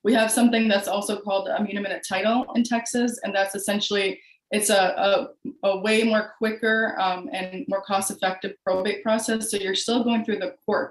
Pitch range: 185-210 Hz